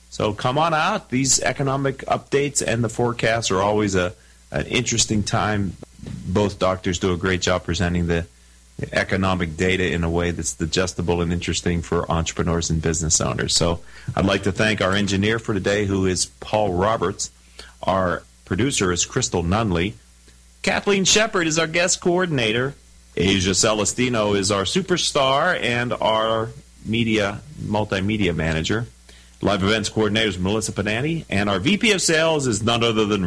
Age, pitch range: 40-59, 90-125 Hz